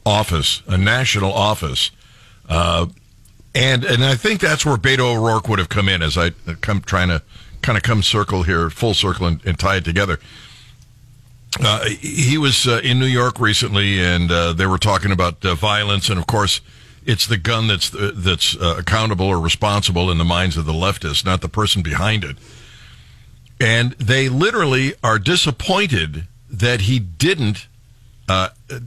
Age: 50-69